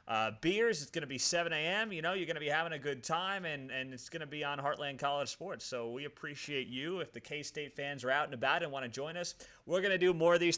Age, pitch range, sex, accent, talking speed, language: 30-49, 130-165 Hz, male, American, 295 wpm, English